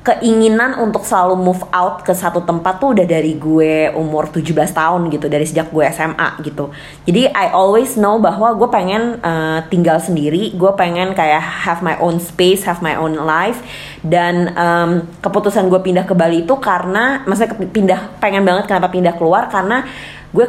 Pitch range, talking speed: 160-195 Hz, 175 wpm